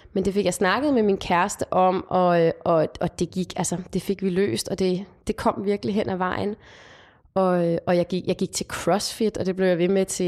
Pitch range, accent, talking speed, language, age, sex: 175-205 Hz, native, 245 wpm, Danish, 20-39, female